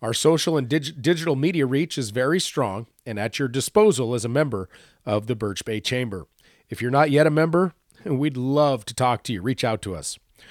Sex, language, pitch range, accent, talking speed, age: male, English, 120-155 Hz, American, 210 wpm, 40-59